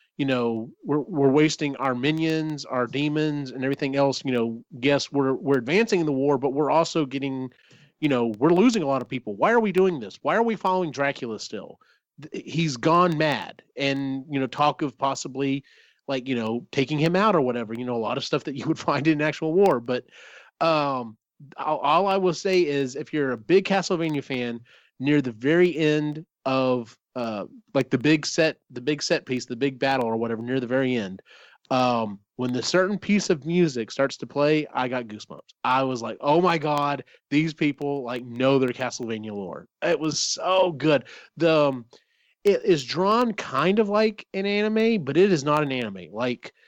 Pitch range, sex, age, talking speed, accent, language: 125-160 Hz, male, 30-49, 205 wpm, American, English